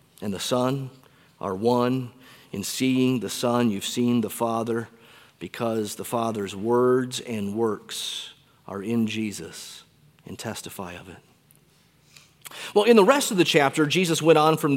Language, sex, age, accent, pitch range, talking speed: English, male, 30-49, American, 120-165 Hz, 150 wpm